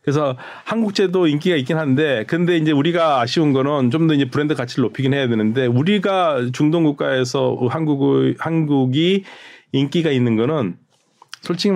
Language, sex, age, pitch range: Korean, male, 40-59, 115-150 Hz